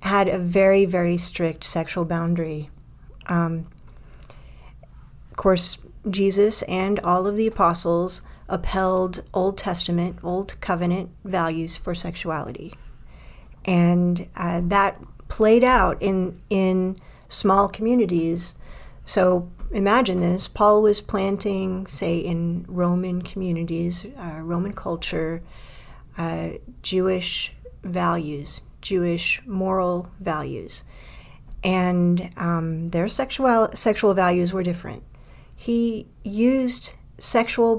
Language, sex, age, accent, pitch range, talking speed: English, female, 40-59, American, 170-200 Hz, 100 wpm